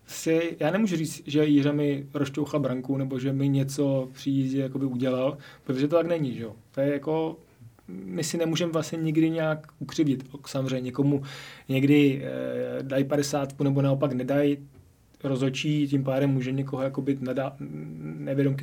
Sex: male